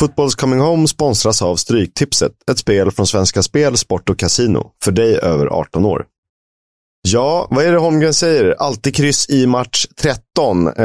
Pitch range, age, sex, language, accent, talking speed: 100-135 Hz, 30-49, male, Swedish, native, 165 wpm